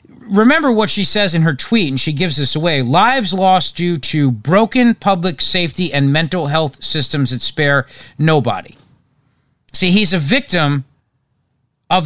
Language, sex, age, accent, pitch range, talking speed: English, male, 40-59, American, 135-185 Hz, 155 wpm